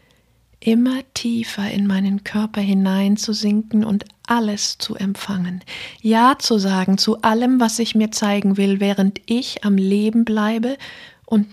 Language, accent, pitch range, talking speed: German, German, 195-230 Hz, 135 wpm